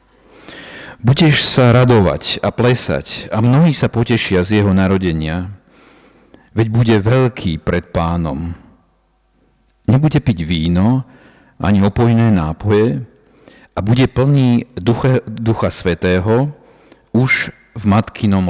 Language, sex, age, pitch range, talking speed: Slovak, male, 50-69, 90-120 Hz, 105 wpm